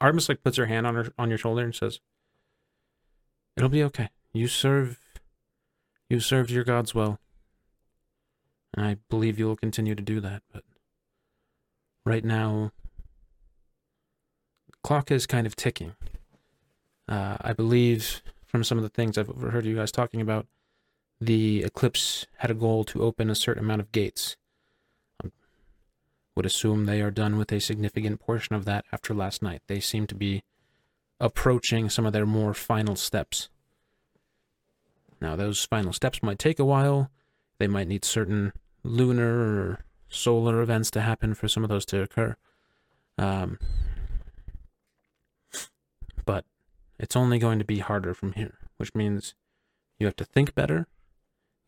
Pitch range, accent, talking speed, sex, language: 100-115 Hz, American, 155 wpm, male, English